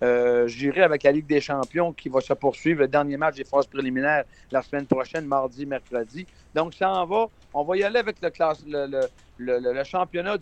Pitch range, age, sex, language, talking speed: 135-170 Hz, 50-69, male, French, 220 wpm